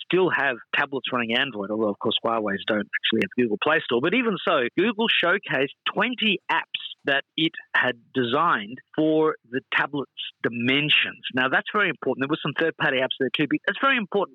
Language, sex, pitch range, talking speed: English, male, 125-155 Hz, 190 wpm